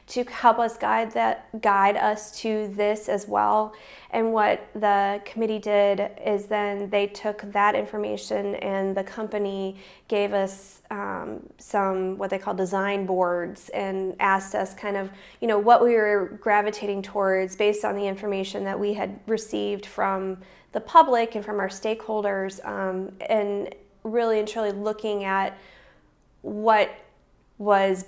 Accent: American